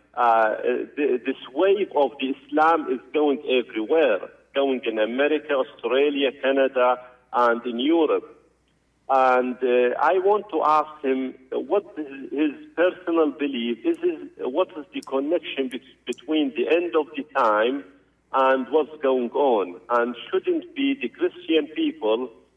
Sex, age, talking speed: male, 50-69, 135 wpm